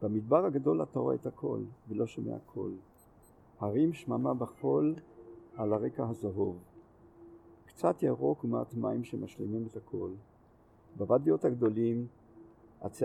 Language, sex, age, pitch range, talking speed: Hebrew, male, 50-69, 105-125 Hz, 115 wpm